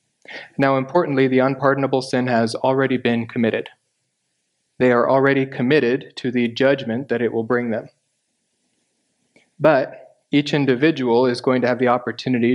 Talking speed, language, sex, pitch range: 145 wpm, English, male, 115-135 Hz